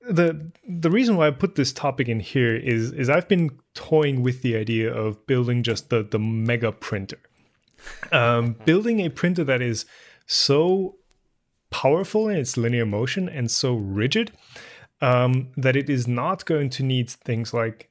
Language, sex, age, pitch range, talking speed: English, male, 30-49, 115-145 Hz, 170 wpm